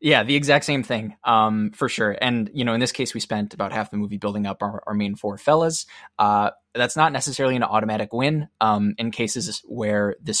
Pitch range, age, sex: 105-125 Hz, 20-39, male